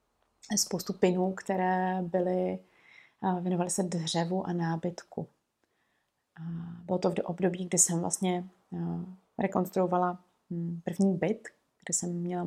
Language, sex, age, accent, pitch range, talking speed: Czech, female, 30-49, native, 175-195 Hz, 120 wpm